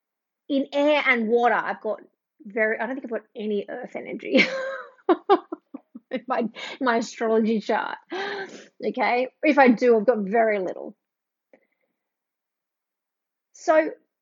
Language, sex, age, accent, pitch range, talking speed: English, female, 30-49, Australian, 255-345 Hz, 125 wpm